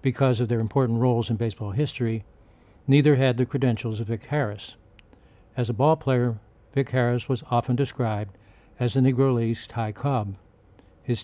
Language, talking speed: English, 165 wpm